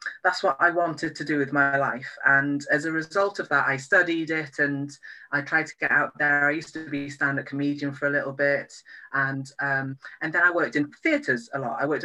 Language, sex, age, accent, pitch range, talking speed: English, female, 30-49, British, 135-165 Hz, 235 wpm